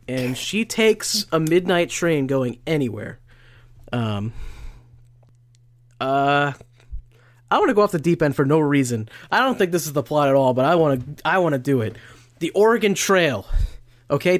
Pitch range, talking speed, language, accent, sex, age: 120-160 Hz, 165 wpm, English, American, male, 20-39